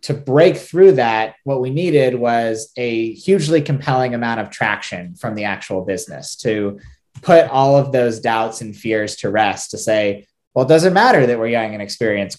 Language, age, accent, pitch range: English, 20-39, American, 115-140 Hz